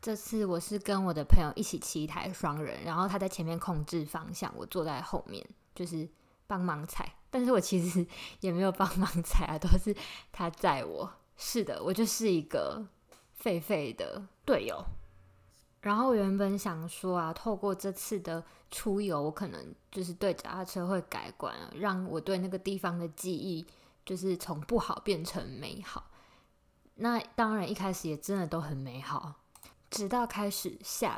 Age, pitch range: 20-39, 170-200 Hz